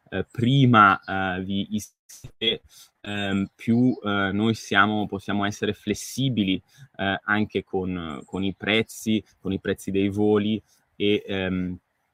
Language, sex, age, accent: Italian, male, 20-39, native